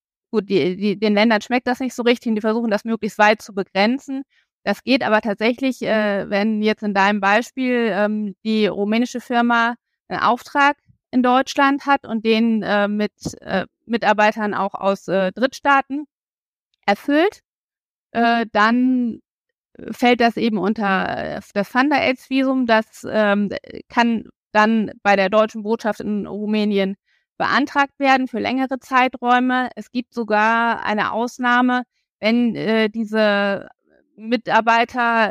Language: German